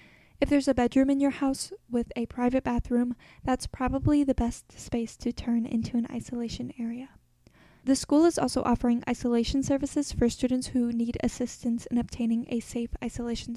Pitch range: 235-265 Hz